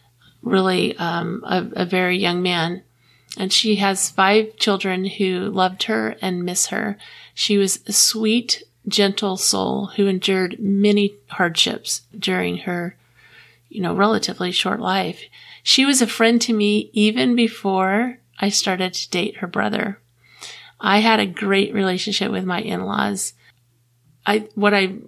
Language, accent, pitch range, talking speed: English, American, 180-210 Hz, 145 wpm